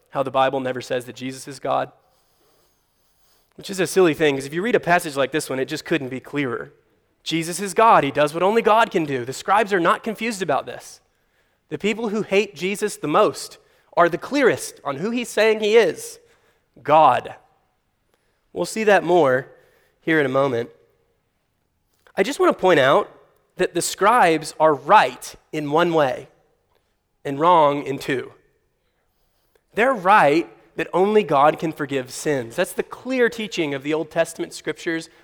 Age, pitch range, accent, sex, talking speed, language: 30-49, 140-200 Hz, American, male, 180 wpm, English